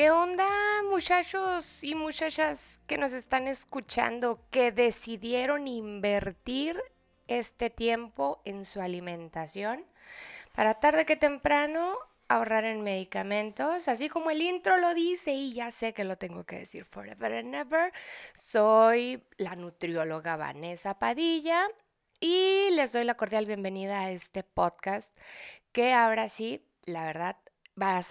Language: Spanish